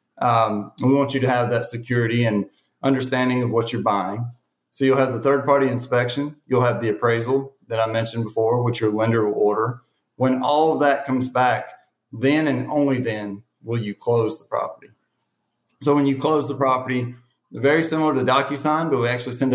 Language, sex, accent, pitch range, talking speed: English, male, American, 115-135 Hz, 190 wpm